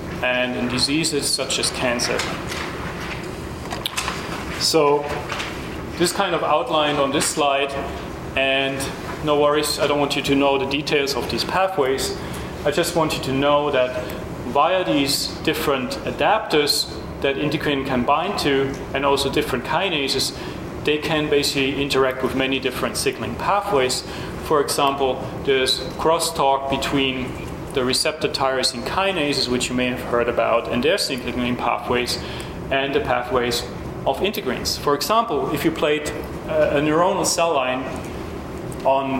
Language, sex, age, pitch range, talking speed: English, male, 30-49, 130-150 Hz, 140 wpm